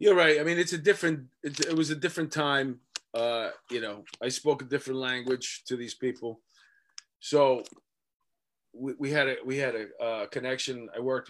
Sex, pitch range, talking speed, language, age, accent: male, 130-200 Hz, 185 wpm, English, 30-49, American